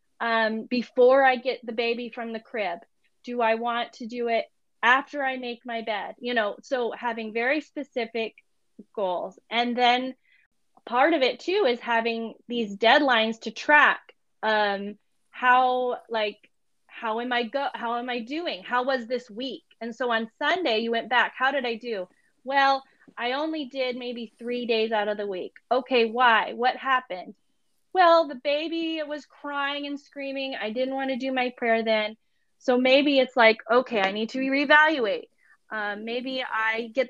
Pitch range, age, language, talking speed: 225-265 Hz, 20-39, English, 175 wpm